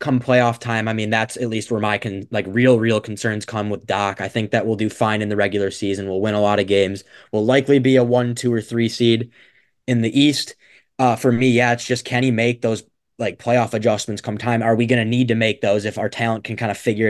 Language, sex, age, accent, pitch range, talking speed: English, male, 20-39, American, 105-125 Hz, 265 wpm